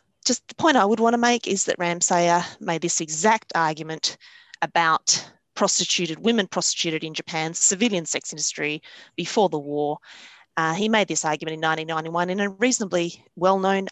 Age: 30-49